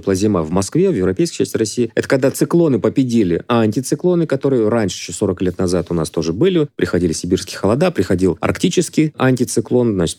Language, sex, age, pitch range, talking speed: Russian, male, 30-49, 95-135 Hz, 175 wpm